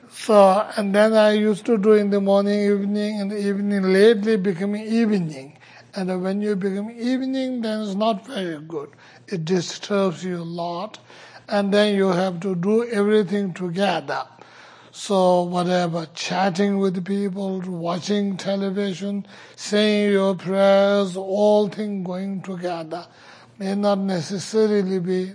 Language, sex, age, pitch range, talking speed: English, male, 60-79, 175-210 Hz, 135 wpm